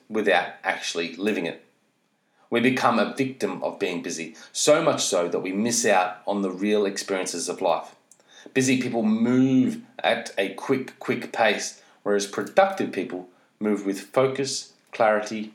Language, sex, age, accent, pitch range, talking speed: English, male, 30-49, Australian, 100-135 Hz, 150 wpm